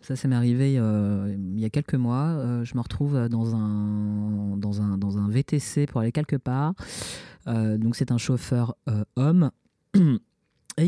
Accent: French